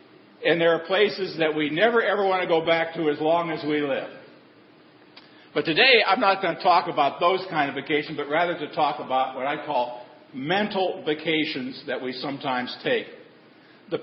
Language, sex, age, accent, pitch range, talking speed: English, male, 50-69, American, 145-185 Hz, 195 wpm